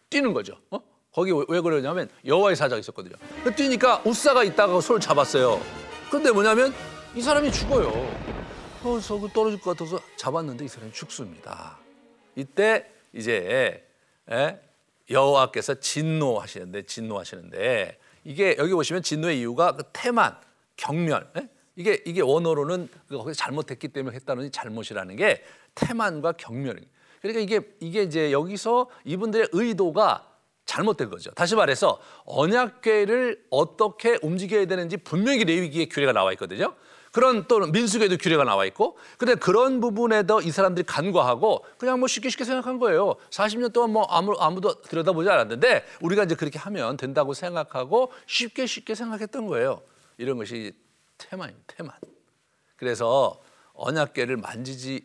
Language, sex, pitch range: Korean, male, 155-240 Hz